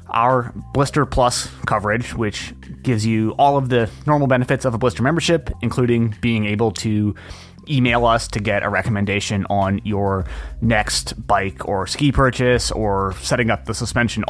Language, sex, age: English, male, 20-39